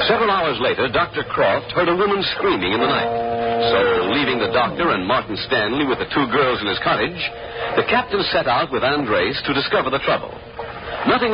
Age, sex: 60-79, male